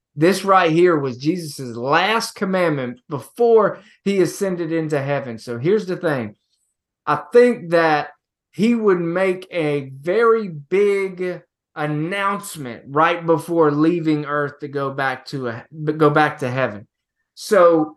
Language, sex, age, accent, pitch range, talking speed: English, male, 20-39, American, 150-205 Hz, 135 wpm